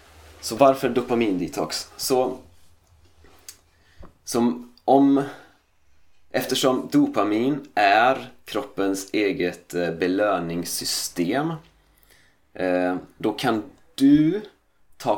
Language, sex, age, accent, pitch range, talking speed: Swedish, male, 30-49, native, 85-115 Hz, 65 wpm